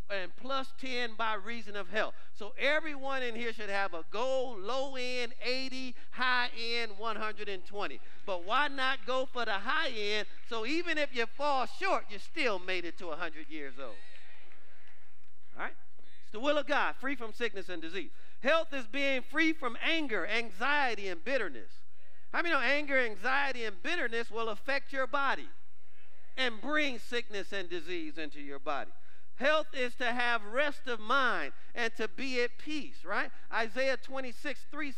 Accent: American